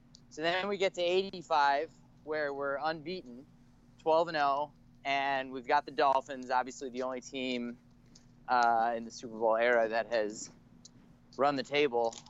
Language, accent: English, American